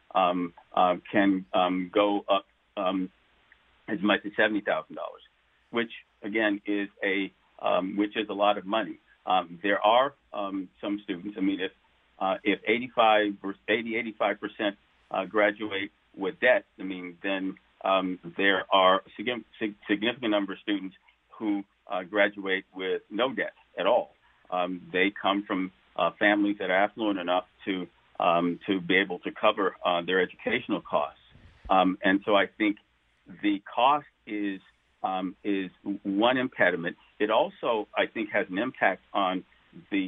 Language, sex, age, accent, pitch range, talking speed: English, male, 50-69, American, 95-105 Hz, 155 wpm